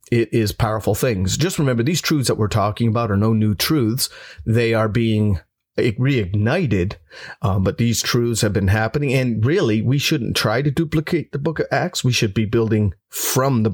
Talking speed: 190 wpm